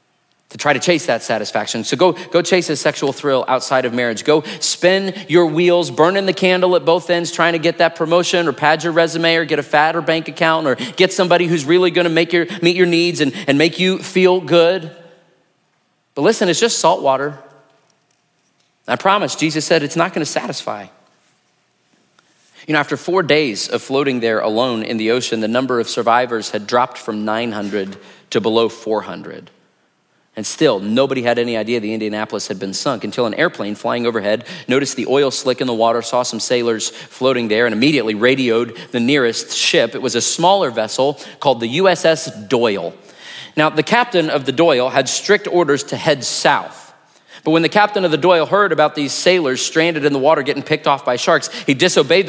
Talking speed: 200 wpm